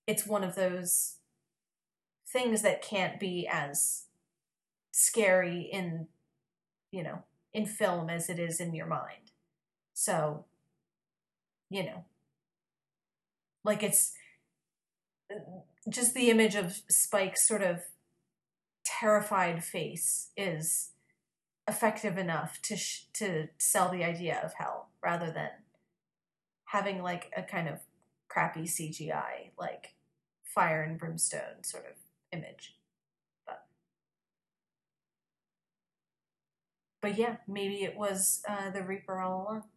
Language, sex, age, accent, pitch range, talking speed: English, female, 30-49, American, 175-210 Hz, 110 wpm